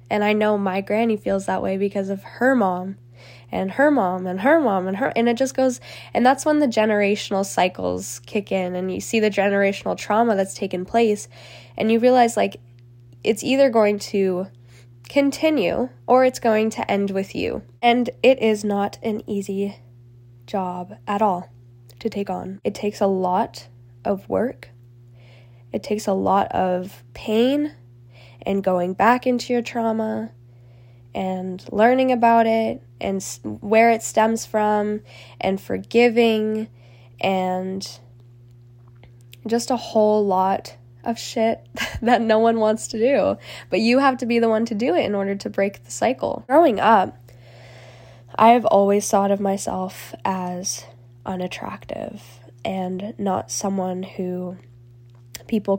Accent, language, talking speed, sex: American, English, 150 wpm, female